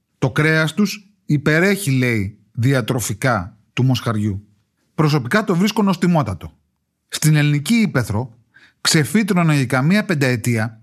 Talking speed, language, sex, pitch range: 105 wpm, Greek, male, 120-180 Hz